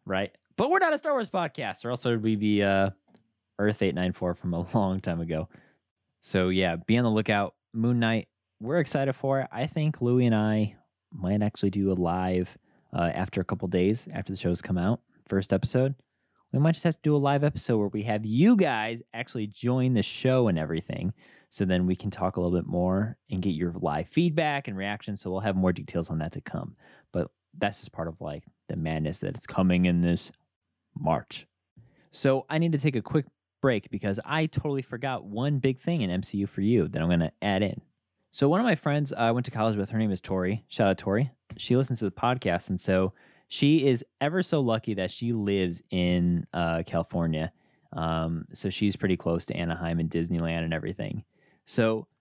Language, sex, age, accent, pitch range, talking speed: English, male, 20-39, American, 90-135 Hz, 215 wpm